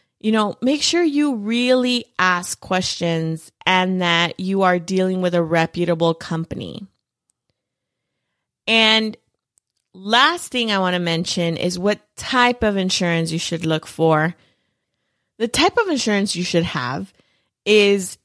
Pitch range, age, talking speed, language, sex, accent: 170-225 Hz, 30-49, 135 wpm, English, female, American